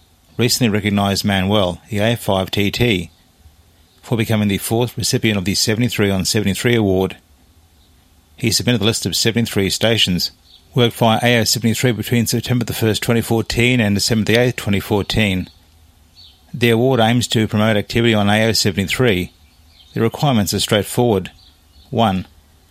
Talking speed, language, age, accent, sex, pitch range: 130 wpm, English, 30-49, Australian, male, 85-115 Hz